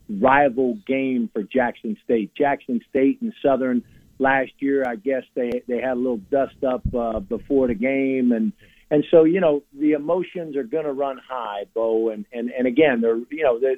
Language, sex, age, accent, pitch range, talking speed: English, male, 50-69, American, 115-145 Hz, 190 wpm